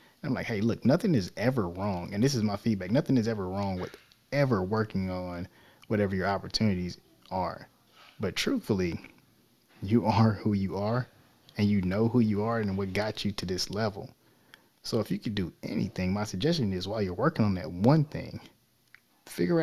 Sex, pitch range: male, 95-120 Hz